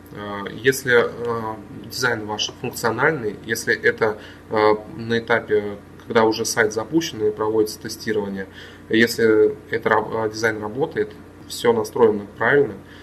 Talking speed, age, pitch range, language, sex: 115 wpm, 20-39, 105-130 Hz, Russian, male